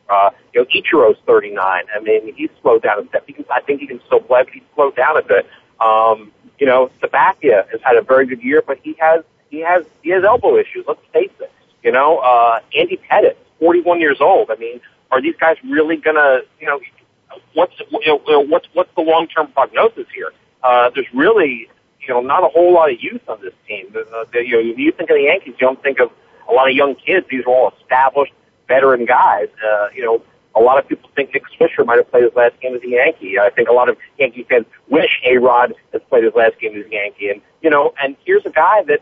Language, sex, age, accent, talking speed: English, male, 40-59, American, 240 wpm